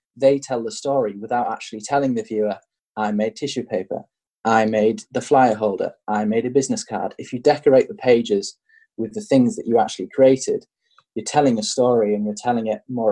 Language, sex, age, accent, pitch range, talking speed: English, male, 20-39, British, 110-150 Hz, 200 wpm